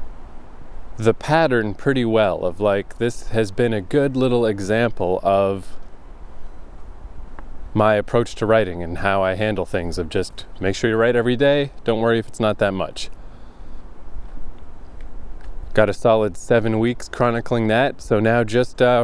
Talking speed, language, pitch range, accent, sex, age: 155 wpm, English, 85-120 Hz, American, male, 20-39